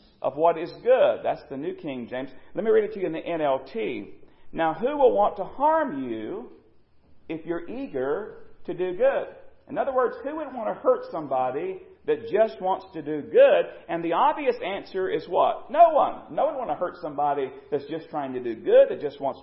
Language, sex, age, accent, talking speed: English, male, 40-59, American, 215 wpm